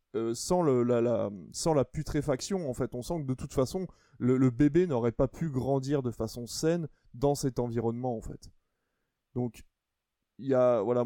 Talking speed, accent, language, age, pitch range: 190 wpm, French, French, 20-39, 115-140 Hz